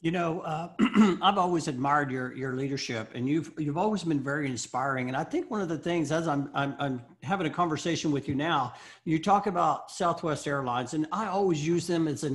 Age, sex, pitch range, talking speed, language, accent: 50-69, male, 150-185 Hz, 220 wpm, English, American